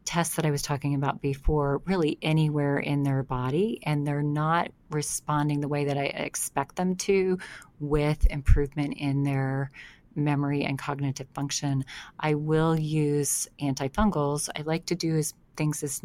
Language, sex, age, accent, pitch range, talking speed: English, female, 30-49, American, 140-155 Hz, 155 wpm